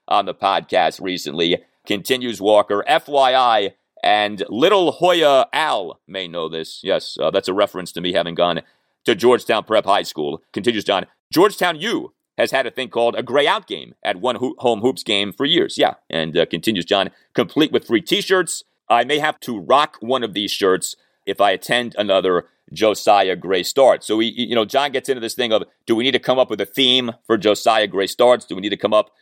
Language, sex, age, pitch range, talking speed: English, male, 30-49, 115-160 Hz, 210 wpm